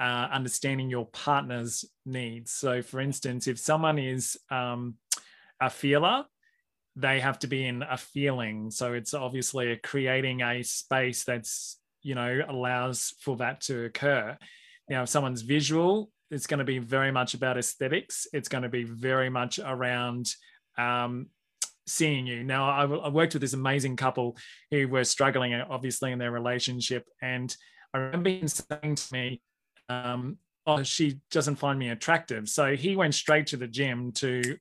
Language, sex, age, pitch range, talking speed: English, male, 20-39, 125-150 Hz, 165 wpm